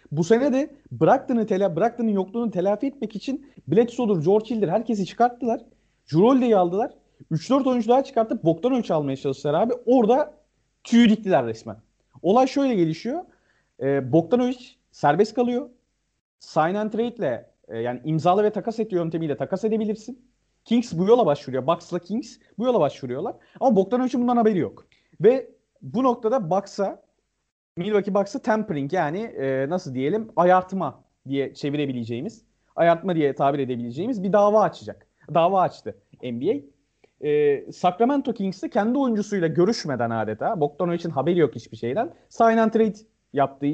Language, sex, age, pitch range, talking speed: Turkish, male, 40-59, 145-235 Hz, 135 wpm